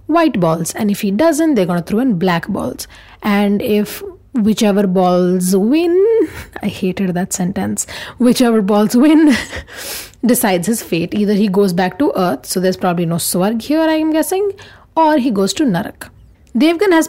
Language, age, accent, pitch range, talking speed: English, 30-49, Indian, 185-250 Hz, 170 wpm